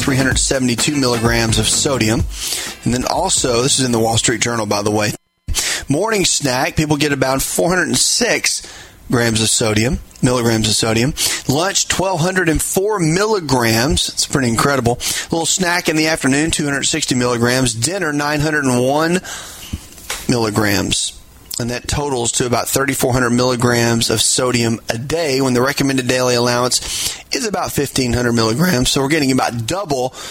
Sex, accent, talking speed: male, American, 140 wpm